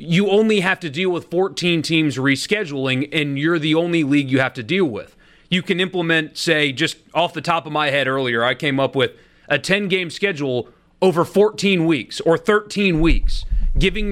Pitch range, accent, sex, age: 140-180 Hz, American, male, 30-49